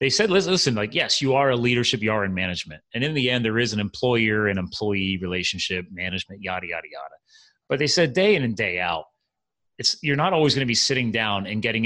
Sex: male